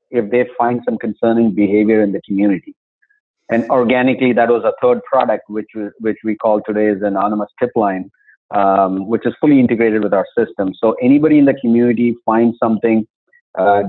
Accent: Indian